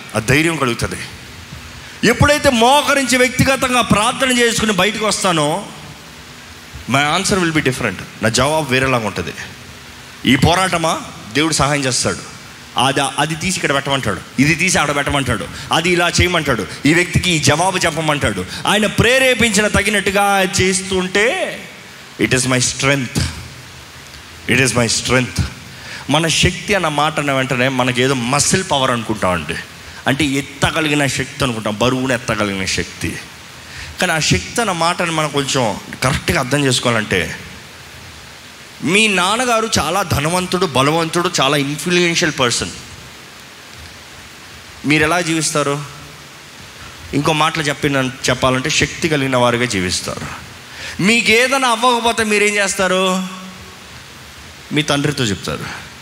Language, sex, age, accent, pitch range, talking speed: Telugu, male, 30-49, native, 125-185 Hz, 115 wpm